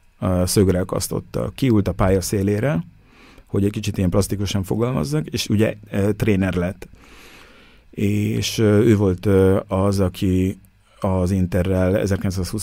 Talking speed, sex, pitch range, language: 120 wpm, male, 95-105 Hz, Hungarian